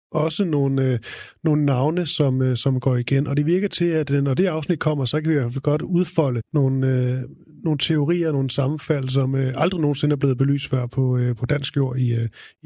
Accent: native